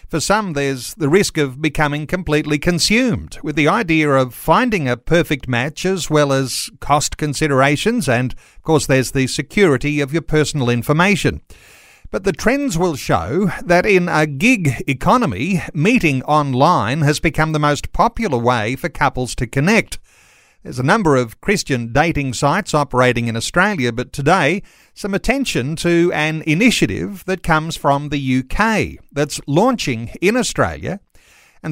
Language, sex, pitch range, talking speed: English, male, 135-180 Hz, 155 wpm